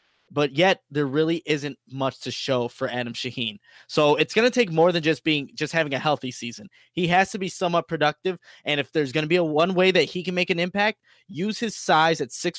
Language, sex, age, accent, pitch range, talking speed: English, male, 20-39, American, 145-180 Hz, 245 wpm